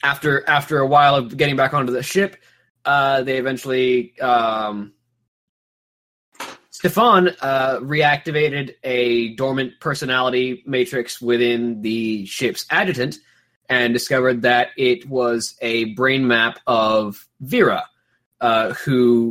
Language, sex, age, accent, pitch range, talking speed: English, male, 20-39, American, 110-130 Hz, 115 wpm